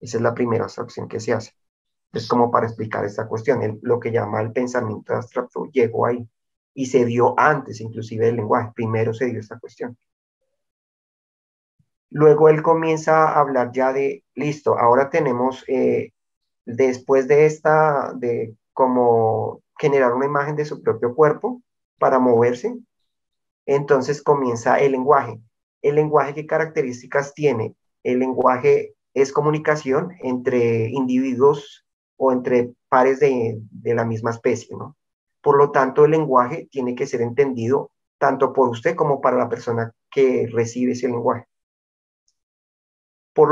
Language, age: Spanish, 30-49